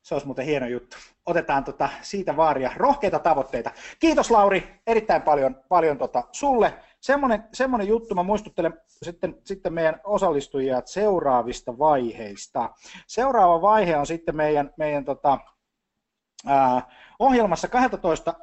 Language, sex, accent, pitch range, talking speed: Finnish, male, native, 130-185 Hz, 125 wpm